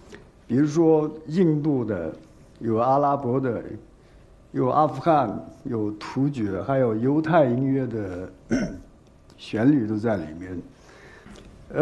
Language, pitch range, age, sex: Chinese, 110-150 Hz, 60-79, male